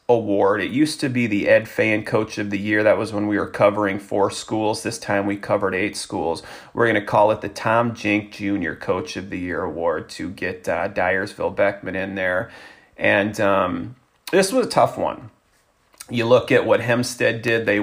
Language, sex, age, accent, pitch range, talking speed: English, male, 30-49, American, 100-115 Hz, 205 wpm